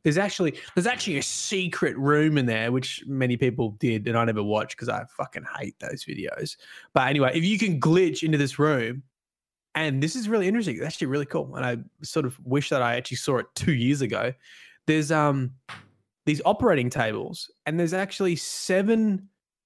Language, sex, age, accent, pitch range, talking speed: English, male, 20-39, Australian, 130-160 Hz, 190 wpm